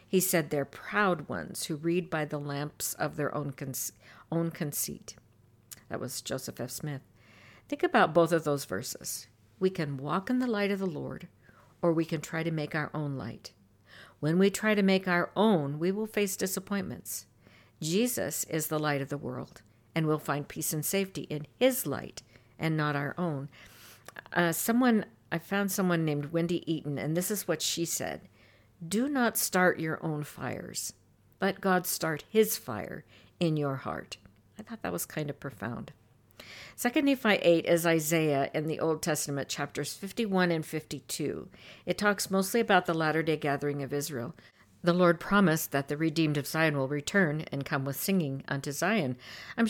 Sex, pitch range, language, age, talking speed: female, 140-185 Hz, English, 60-79, 180 wpm